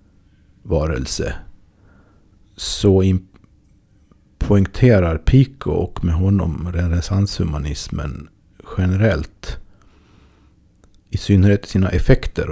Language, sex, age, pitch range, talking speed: Swedish, male, 50-69, 85-100 Hz, 60 wpm